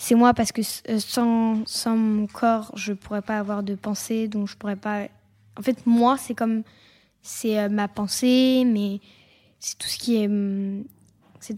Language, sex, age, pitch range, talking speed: French, female, 20-39, 210-250 Hz, 170 wpm